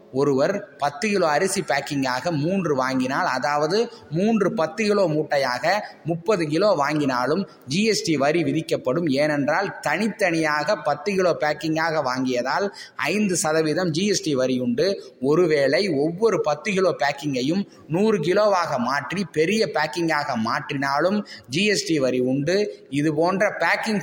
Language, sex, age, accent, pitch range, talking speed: Tamil, male, 20-39, native, 145-190 Hz, 110 wpm